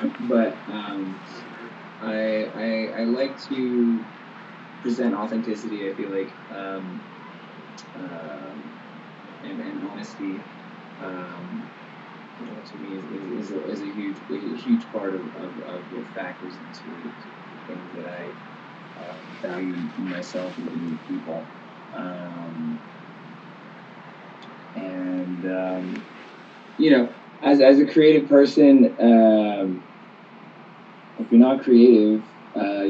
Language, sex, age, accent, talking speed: English, male, 20-39, American, 120 wpm